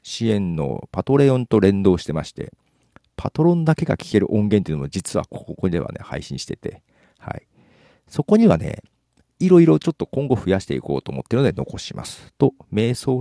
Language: Japanese